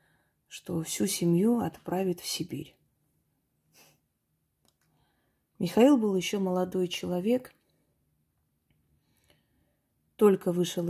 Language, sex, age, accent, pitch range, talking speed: Russian, female, 30-49, native, 170-195 Hz, 70 wpm